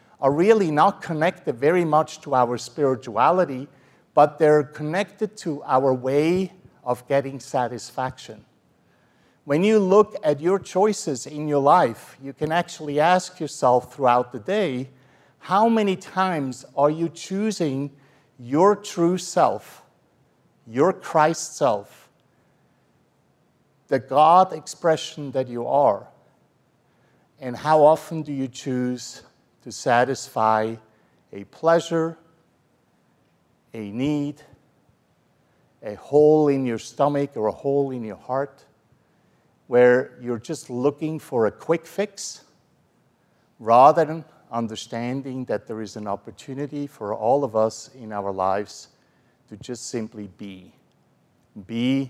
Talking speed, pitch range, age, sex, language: 120 wpm, 125-160 Hz, 50-69, male, English